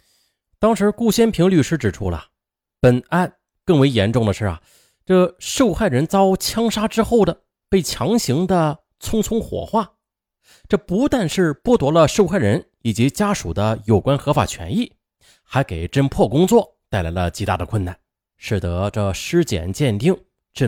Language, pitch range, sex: Chinese, 100-170 Hz, male